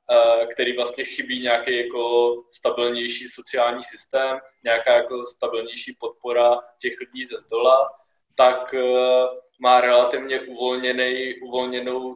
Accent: Czech